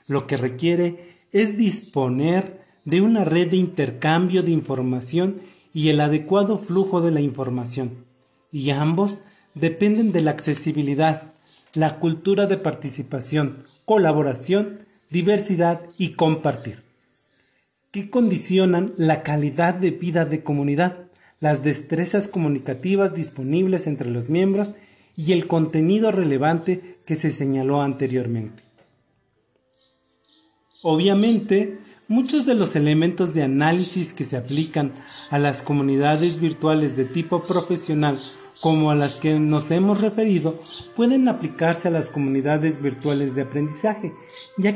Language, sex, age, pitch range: Spanish, male, 40-59, 140-185 Hz